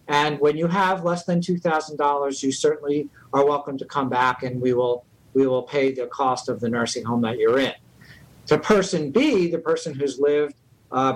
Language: English